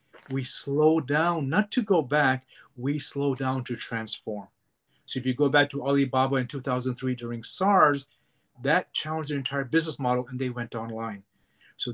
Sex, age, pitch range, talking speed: male, 30-49, 125-150 Hz, 170 wpm